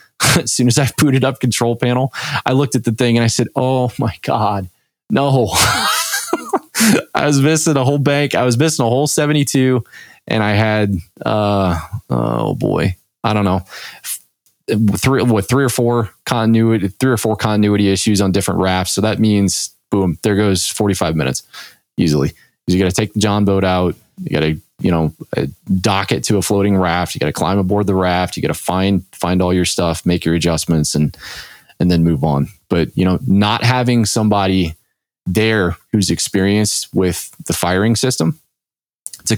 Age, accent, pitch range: 20-39, American, 90-120 Hz